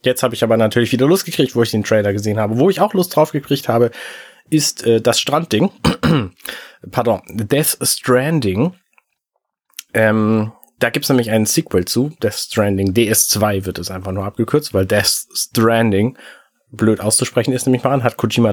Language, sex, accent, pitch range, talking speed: German, male, German, 105-130 Hz, 180 wpm